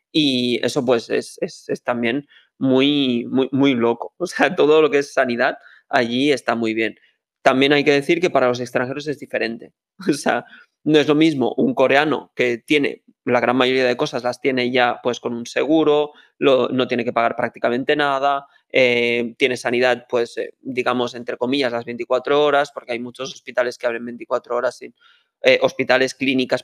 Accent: Spanish